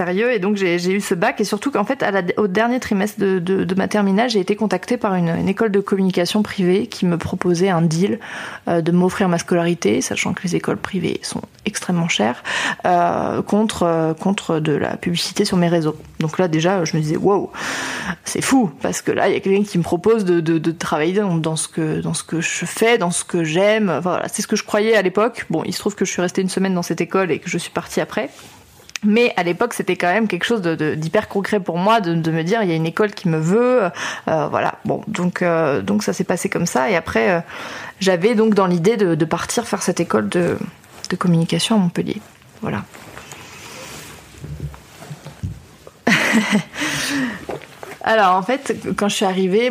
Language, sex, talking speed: French, female, 220 wpm